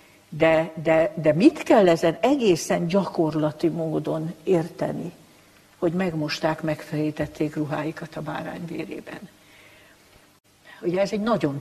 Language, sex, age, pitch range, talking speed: Hungarian, female, 60-79, 155-170 Hz, 105 wpm